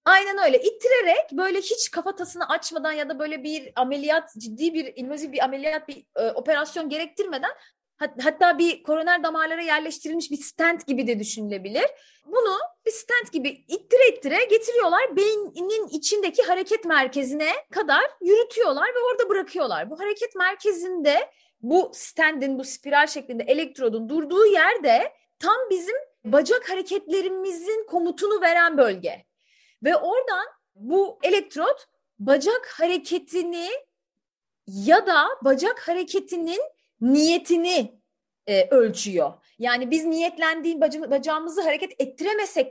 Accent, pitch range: native, 285-385 Hz